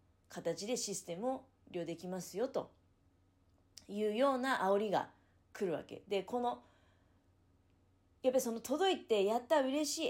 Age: 40-59